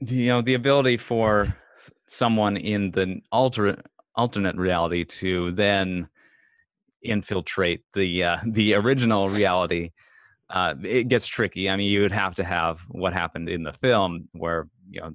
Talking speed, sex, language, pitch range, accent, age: 150 wpm, male, English, 85-105 Hz, American, 30-49